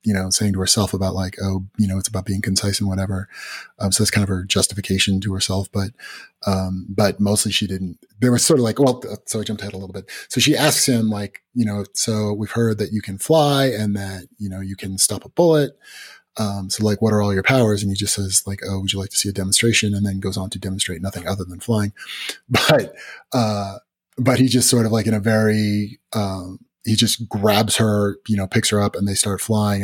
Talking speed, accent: 245 wpm, American